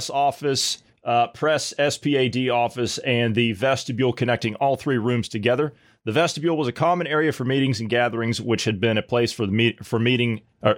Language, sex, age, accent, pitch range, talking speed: English, male, 30-49, American, 110-150 Hz, 190 wpm